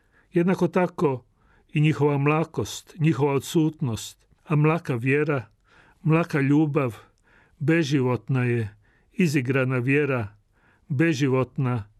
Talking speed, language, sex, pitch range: 85 wpm, Croatian, male, 125-165 Hz